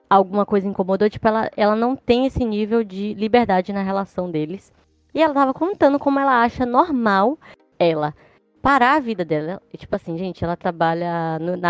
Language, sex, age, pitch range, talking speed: Portuguese, female, 20-39, 195-260 Hz, 175 wpm